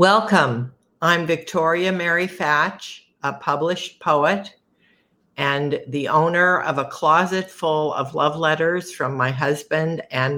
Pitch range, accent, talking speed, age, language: 135-165 Hz, American, 125 wpm, 50-69, English